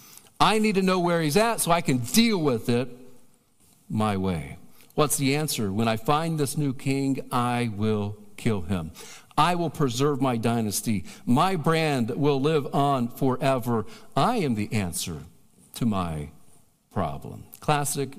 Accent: American